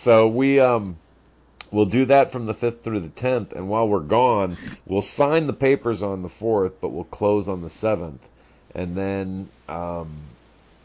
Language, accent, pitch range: English, American, 80-100 Hz